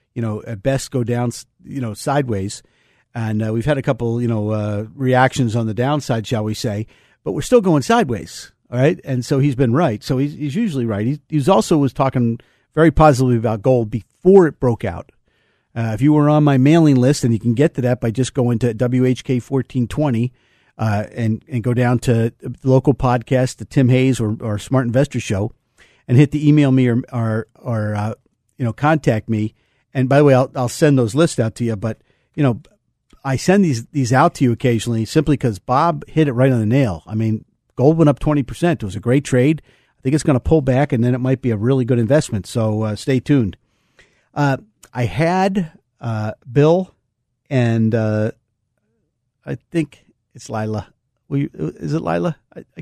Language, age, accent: English, 50-69, American